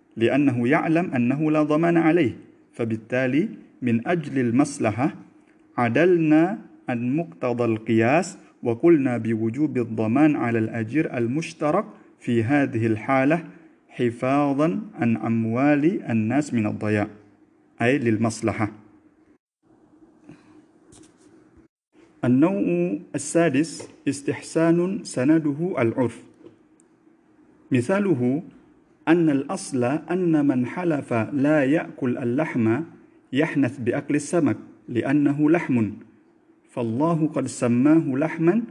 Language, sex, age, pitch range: Arabic, male, 50-69, 120-170 Hz